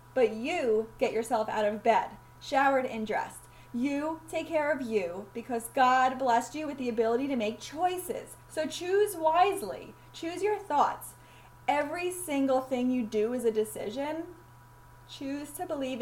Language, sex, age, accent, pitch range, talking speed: English, female, 10-29, American, 220-290 Hz, 155 wpm